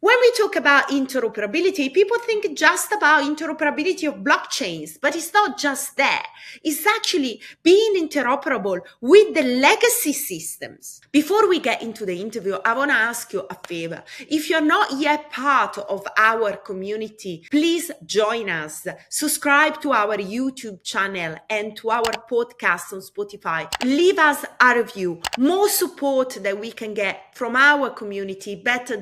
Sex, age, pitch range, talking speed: female, 30-49, 205-290 Hz, 155 wpm